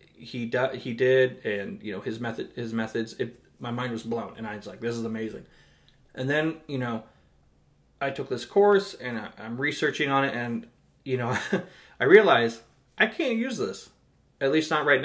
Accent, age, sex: American, 20-39, male